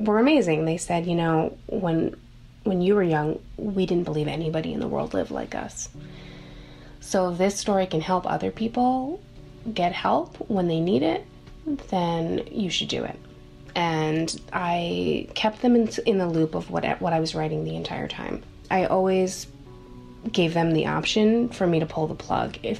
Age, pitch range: 20-39, 125-185 Hz